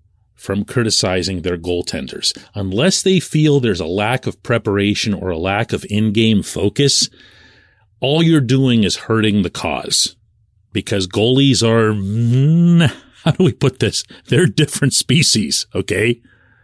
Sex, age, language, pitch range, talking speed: male, 40-59, English, 100-130 Hz, 135 wpm